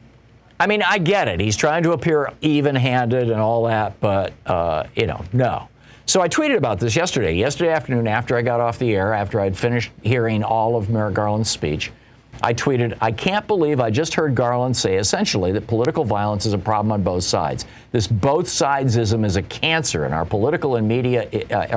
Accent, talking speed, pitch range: American, 200 wpm, 110-145 Hz